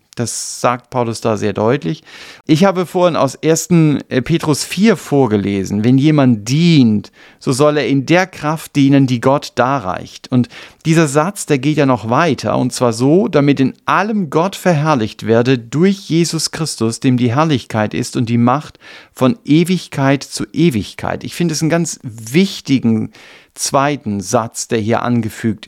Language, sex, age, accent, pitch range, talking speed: German, male, 50-69, German, 120-165 Hz, 160 wpm